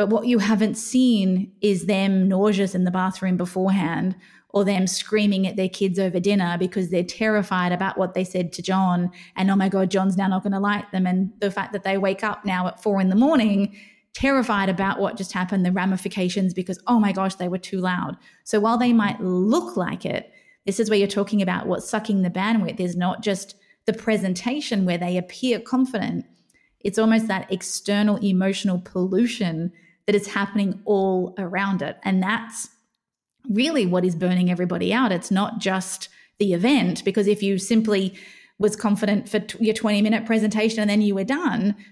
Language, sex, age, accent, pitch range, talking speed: English, female, 20-39, Australian, 190-220 Hz, 190 wpm